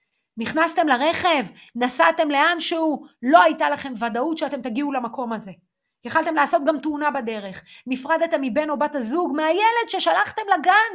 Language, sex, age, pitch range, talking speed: Hebrew, female, 30-49, 235-330 Hz, 145 wpm